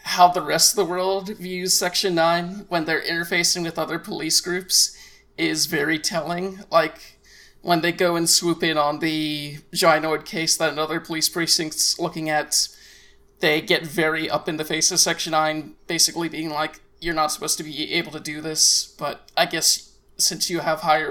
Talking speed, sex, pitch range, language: 185 wpm, male, 160-185 Hz, English